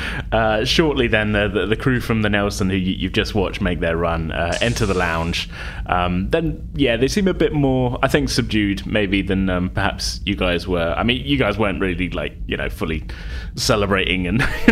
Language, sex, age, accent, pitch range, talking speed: English, male, 20-39, British, 90-115 Hz, 210 wpm